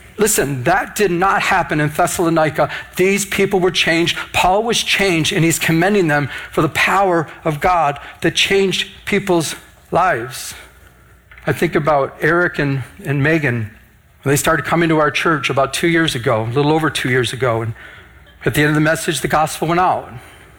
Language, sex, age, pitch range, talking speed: English, male, 40-59, 150-190 Hz, 180 wpm